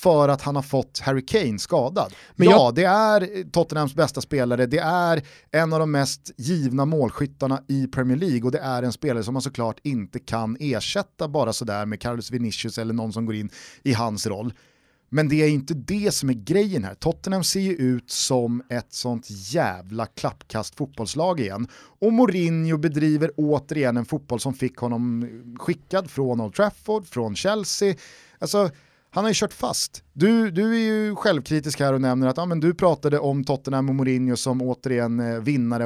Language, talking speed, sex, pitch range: Swedish, 185 wpm, male, 120-165 Hz